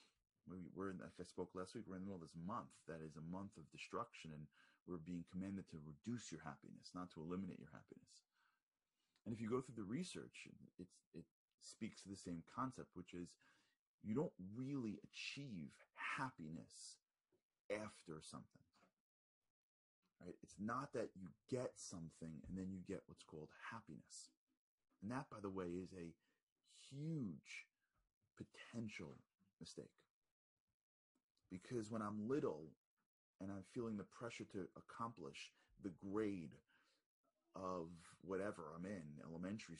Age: 30-49